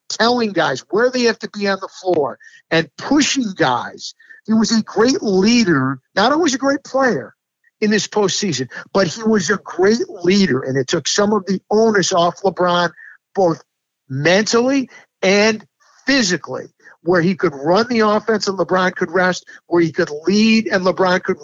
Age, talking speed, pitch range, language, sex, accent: 50-69, 175 wpm, 175-220 Hz, English, male, American